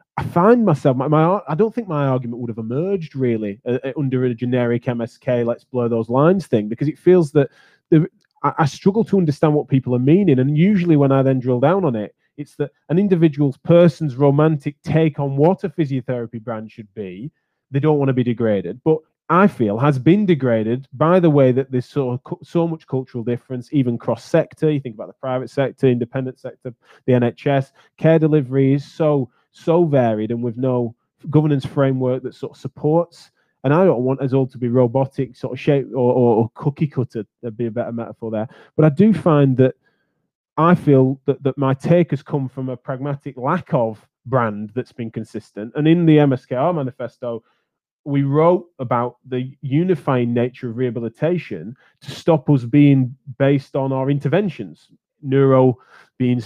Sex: male